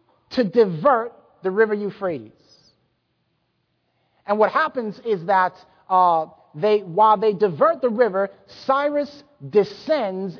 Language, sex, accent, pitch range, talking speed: English, male, American, 165-235 Hz, 110 wpm